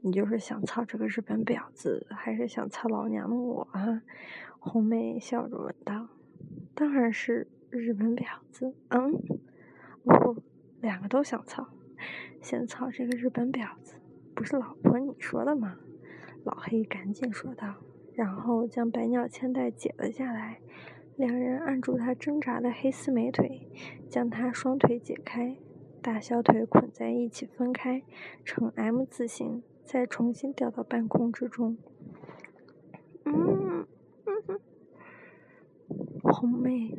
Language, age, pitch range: Chinese, 20-39, 230-260 Hz